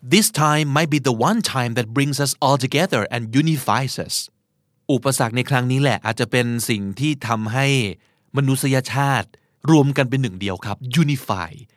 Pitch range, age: 120-155 Hz, 20-39